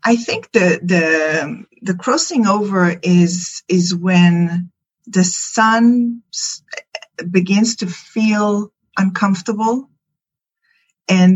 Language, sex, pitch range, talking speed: English, female, 170-205 Hz, 90 wpm